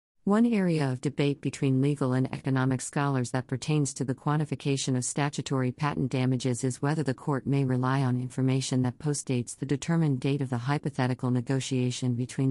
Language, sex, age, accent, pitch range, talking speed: English, female, 50-69, American, 130-150 Hz, 175 wpm